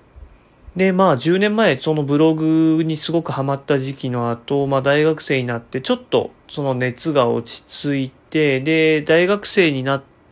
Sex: male